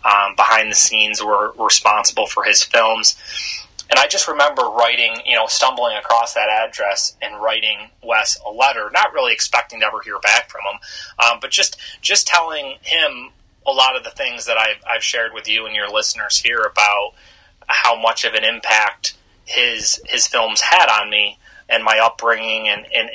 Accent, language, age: American, English, 30-49